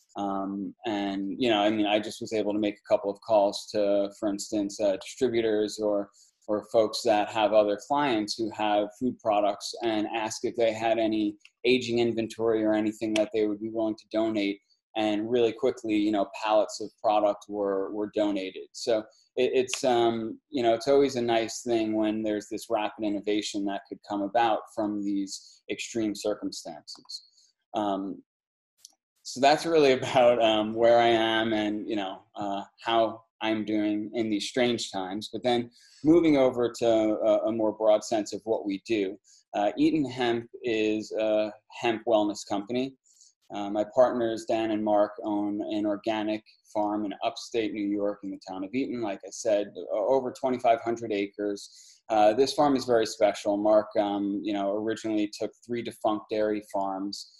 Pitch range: 105-115 Hz